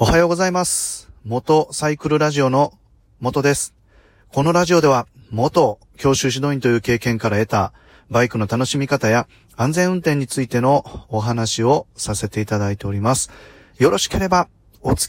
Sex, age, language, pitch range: male, 30-49, Japanese, 100-125 Hz